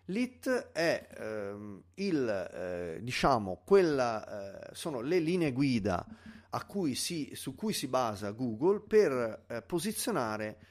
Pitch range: 100-155 Hz